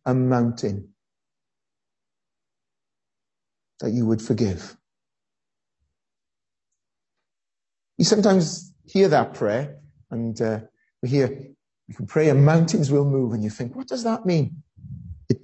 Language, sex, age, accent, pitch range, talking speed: English, male, 40-59, British, 120-175 Hz, 115 wpm